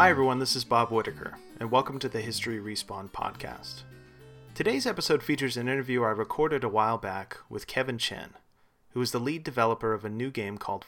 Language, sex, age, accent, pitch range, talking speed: English, male, 30-49, American, 100-130 Hz, 200 wpm